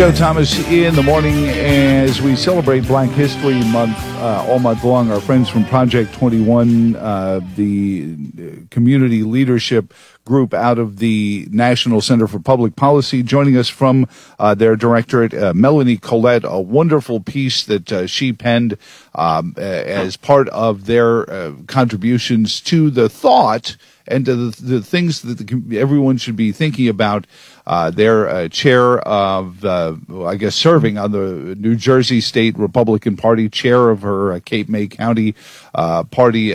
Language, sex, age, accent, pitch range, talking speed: English, male, 50-69, American, 110-130 Hz, 150 wpm